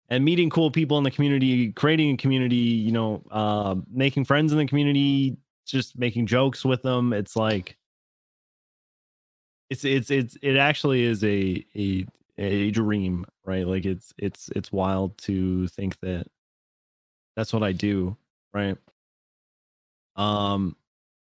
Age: 20-39